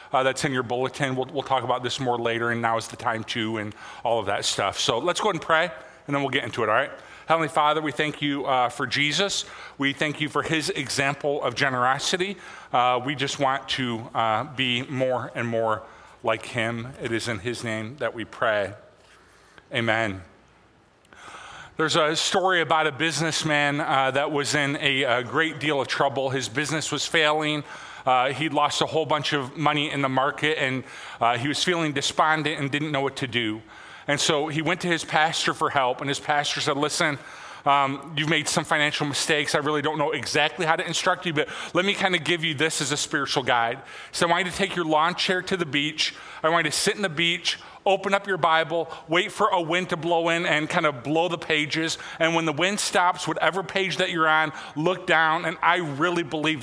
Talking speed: 225 wpm